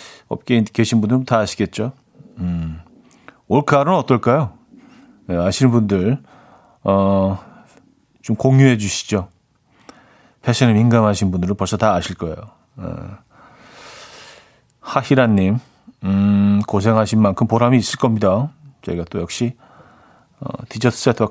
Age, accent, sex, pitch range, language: 40-59, native, male, 105-145 Hz, Korean